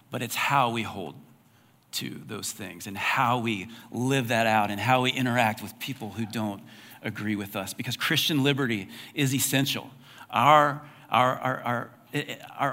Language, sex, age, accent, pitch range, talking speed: English, male, 40-59, American, 110-135 Hz, 160 wpm